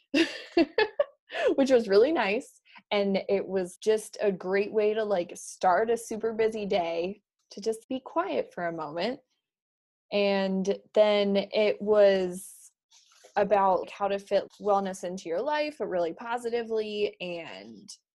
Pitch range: 180-220 Hz